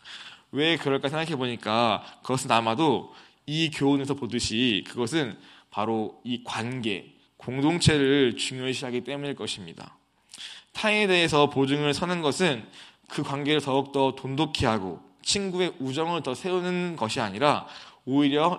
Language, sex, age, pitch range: Korean, male, 20-39, 120-155 Hz